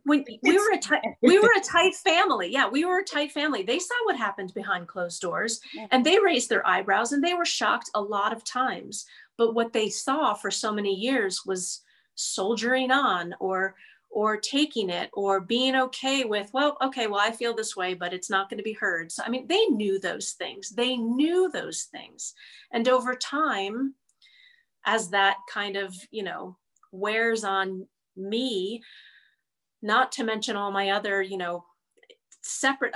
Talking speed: 175 wpm